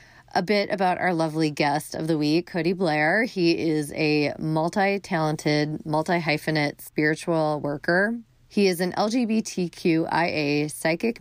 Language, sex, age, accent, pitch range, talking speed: English, female, 30-49, American, 150-175 Hz, 125 wpm